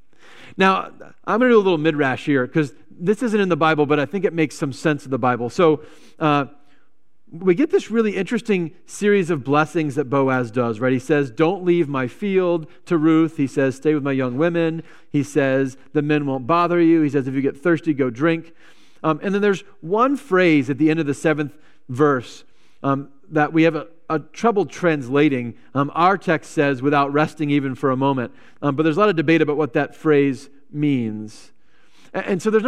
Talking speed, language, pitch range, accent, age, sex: 215 wpm, English, 140-180 Hz, American, 40-59, male